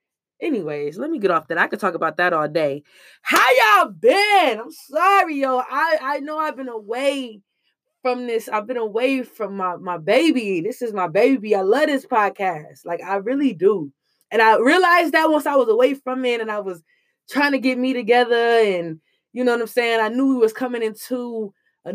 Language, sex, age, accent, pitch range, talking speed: English, female, 20-39, American, 200-275 Hz, 210 wpm